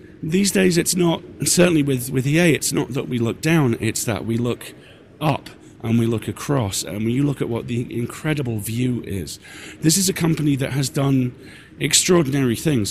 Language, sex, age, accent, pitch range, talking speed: English, male, 40-59, British, 135-175 Hz, 190 wpm